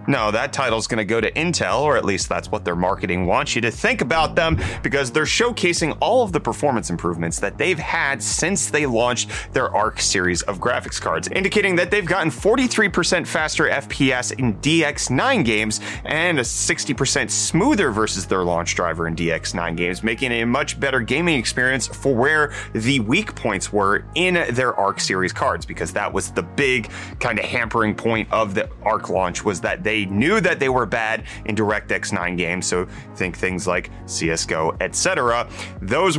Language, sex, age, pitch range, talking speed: English, male, 30-49, 100-140 Hz, 185 wpm